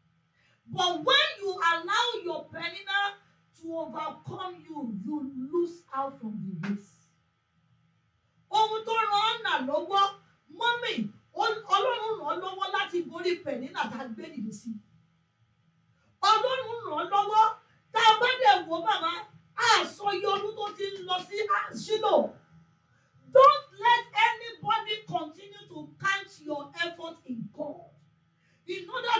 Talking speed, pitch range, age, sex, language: 60 wpm, 295-425 Hz, 40-59, female, English